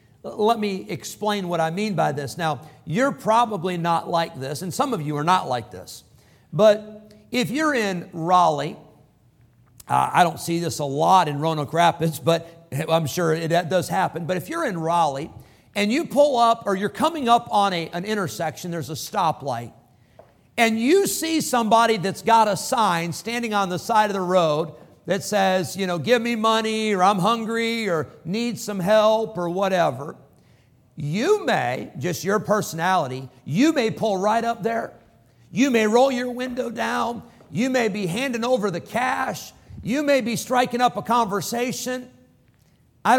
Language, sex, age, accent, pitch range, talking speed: English, male, 50-69, American, 165-230 Hz, 175 wpm